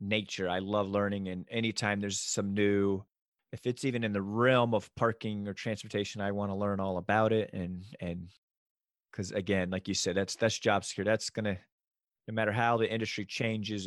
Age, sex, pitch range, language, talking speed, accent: 30-49, male, 100-115 Hz, English, 195 wpm, American